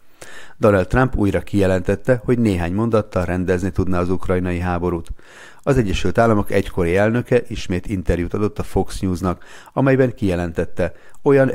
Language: Hungarian